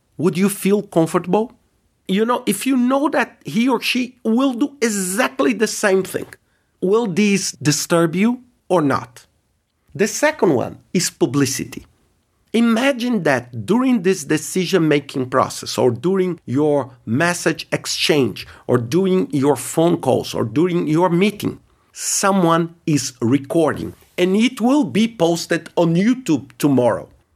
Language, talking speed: English, 135 wpm